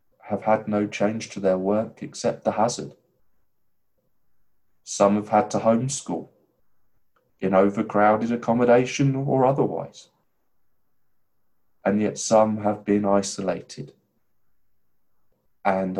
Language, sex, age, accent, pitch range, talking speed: English, male, 20-39, British, 95-105 Hz, 100 wpm